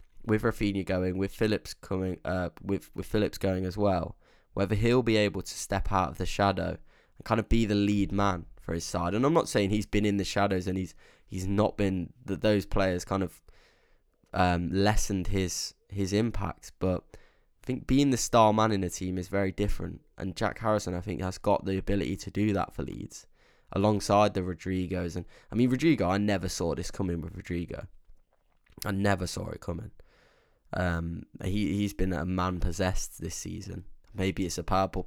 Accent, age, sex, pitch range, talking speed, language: British, 10-29, male, 90-105 Hz, 200 wpm, English